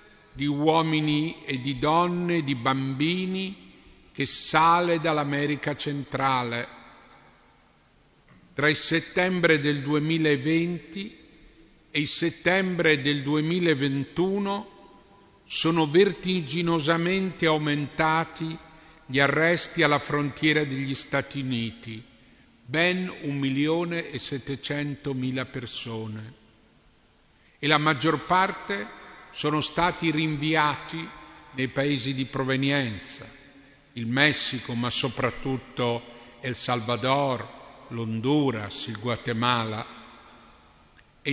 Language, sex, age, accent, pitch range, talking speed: Italian, male, 50-69, native, 135-165 Hz, 85 wpm